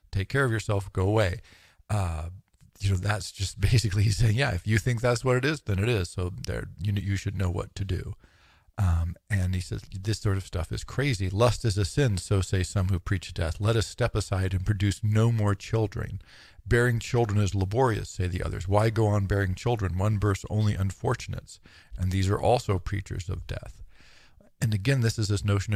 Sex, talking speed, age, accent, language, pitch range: male, 215 wpm, 50-69, American, English, 95-110 Hz